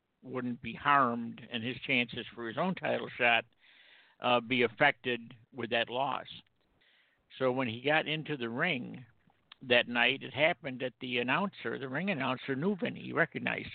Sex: male